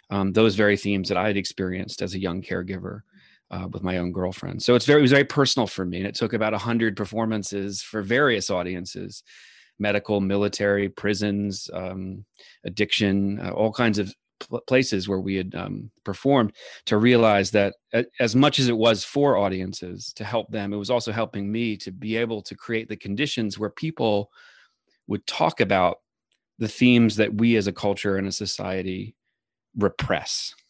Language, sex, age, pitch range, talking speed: English, male, 30-49, 100-115 Hz, 180 wpm